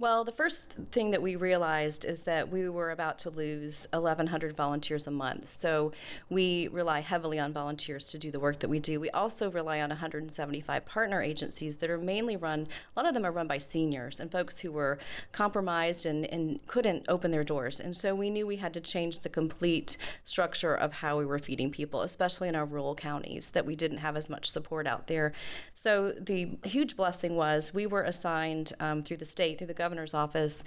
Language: English